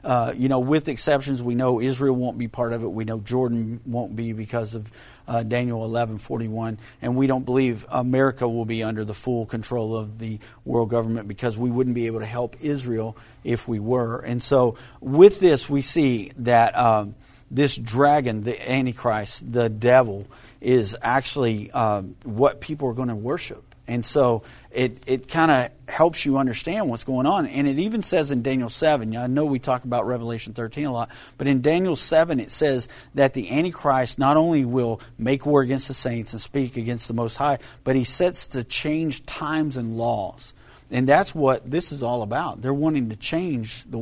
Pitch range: 115-135 Hz